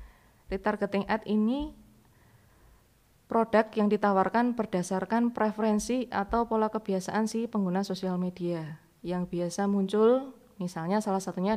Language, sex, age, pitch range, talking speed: Indonesian, female, 20-39, 185-220 Hz, 110 wpm